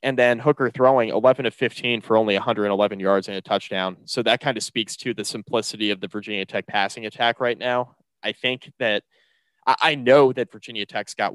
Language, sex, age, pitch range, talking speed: English, male, 20-39, 95-115 Hz, 205 wpm